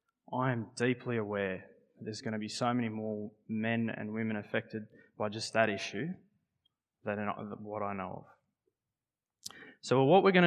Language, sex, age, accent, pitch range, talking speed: English, male, 20-39, Australian, 110-135 Hz, 160 wpm